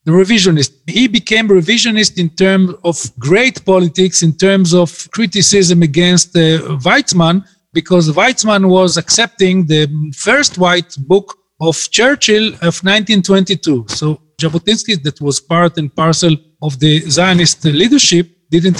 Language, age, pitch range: English, 40-59, 165-210 Hz